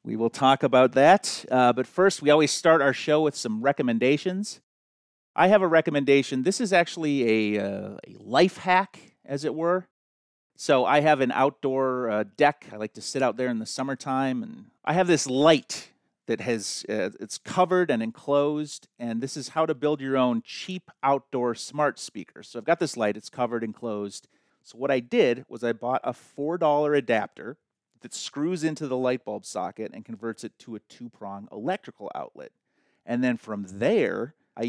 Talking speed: 190 wpm